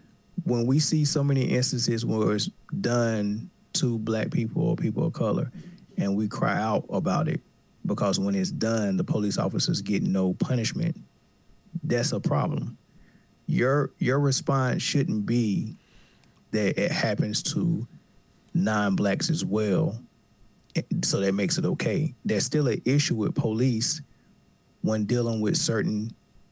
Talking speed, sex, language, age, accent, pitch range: 140 wpm, male, English, 30-49, American, 105-140 Hz